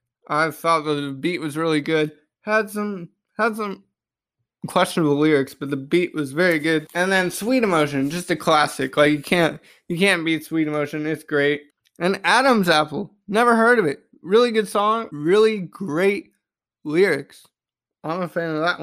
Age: 20-39